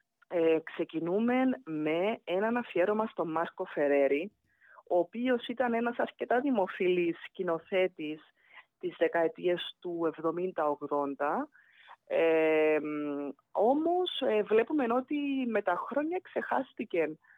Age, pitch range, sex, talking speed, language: 20-39, 160-230 Hz, female, 95 wpm, Greek